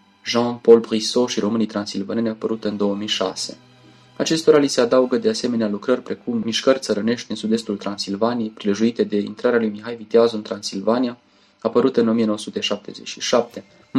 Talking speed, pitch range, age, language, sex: 135 wpm, 105-125 Hz, 20-39, English, male